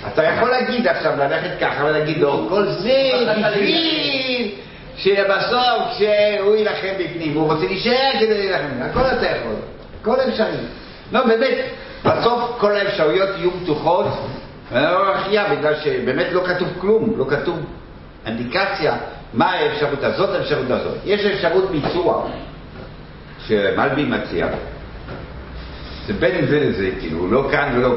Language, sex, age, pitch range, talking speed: Hebrew, male, 50-69, 130-205 Hz, 130 wpm